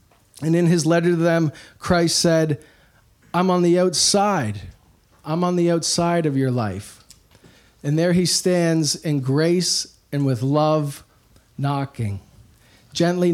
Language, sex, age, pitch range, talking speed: English, male, 40-59, 120-175 Hz, 135 wpm